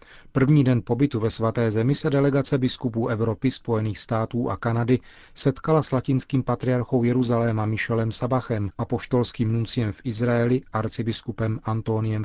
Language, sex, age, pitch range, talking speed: Czech, male, 40-59, 110-130 Hz, 135 wpm